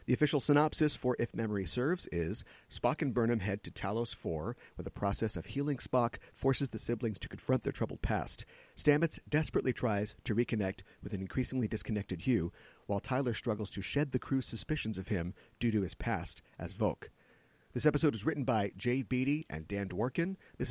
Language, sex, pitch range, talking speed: English, male, 100-140 Hz, 190 wpm